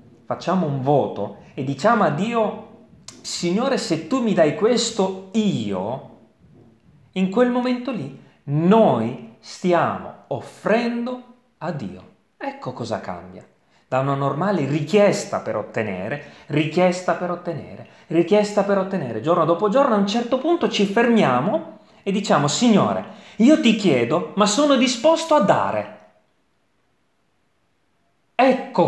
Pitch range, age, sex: 145-230 Hz, 30-49, male